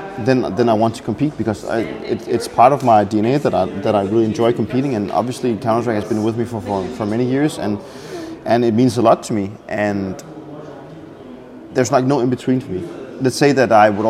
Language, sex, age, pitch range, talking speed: English, male, 20-39, 105-120 Hz, 225 wpm